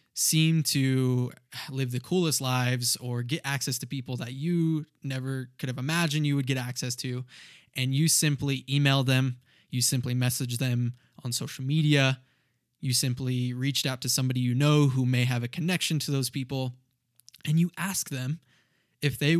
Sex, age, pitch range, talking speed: male, 20-39, 125-150 Hz, 175 wpm